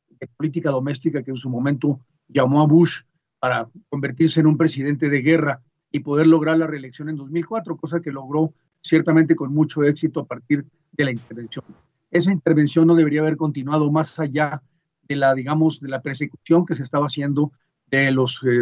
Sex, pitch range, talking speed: male, 135-160 Hz, 180 wpm